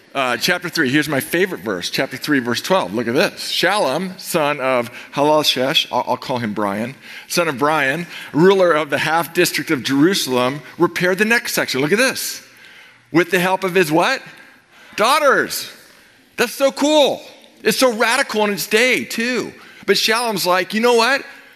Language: English